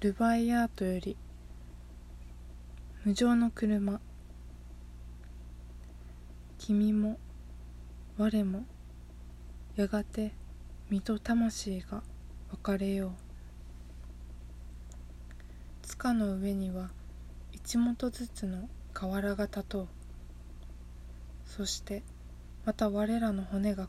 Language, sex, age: Japanese, female, 20-39